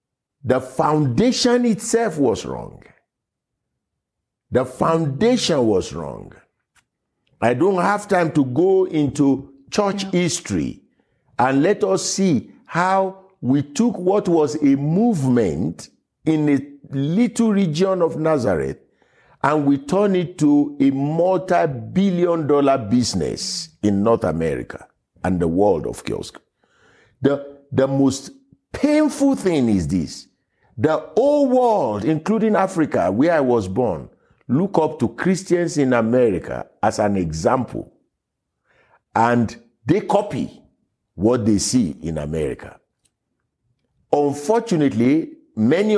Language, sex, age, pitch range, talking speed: English, male, 50-69, 135-195 Hz, 115 wpm